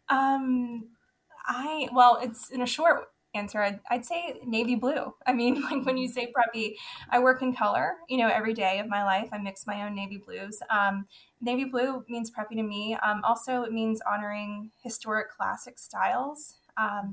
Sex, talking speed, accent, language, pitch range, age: female, 185 wpm, American, English, 195-245 Hz, 10-29